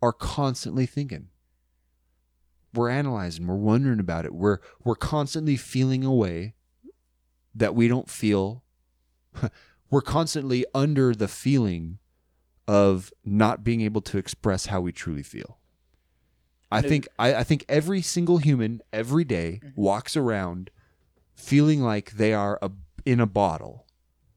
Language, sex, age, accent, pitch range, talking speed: English, male, 30-49, American, 95-140 Hz, 135 wpm